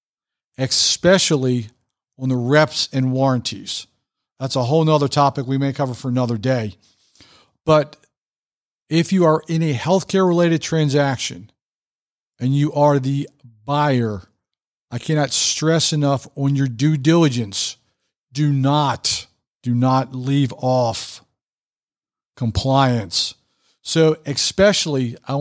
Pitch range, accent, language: 125-160 Hz, American, English